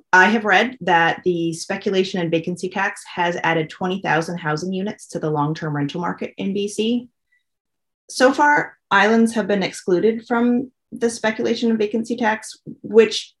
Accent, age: American, 30-49